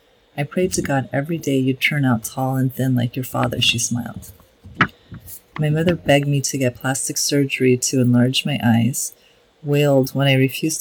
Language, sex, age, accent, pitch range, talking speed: English, female, 30-49, American, 125-145 Hz, 185 wpm